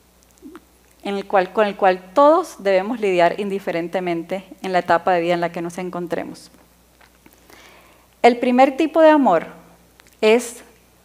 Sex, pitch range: female, 190-270 Hz